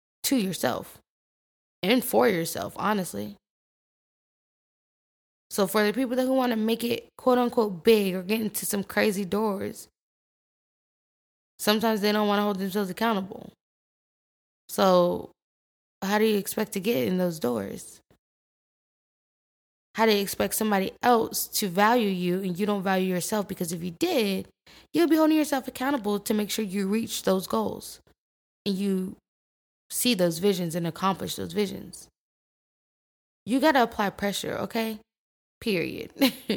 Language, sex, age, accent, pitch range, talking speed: English, female, 10-29, American, 195-240 Hz, 145 wpm